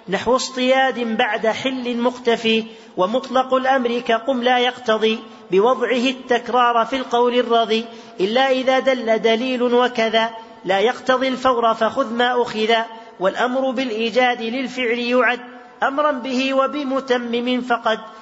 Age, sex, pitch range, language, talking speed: 40-59, male, 230-260 Hz, Arabic, 110 wpm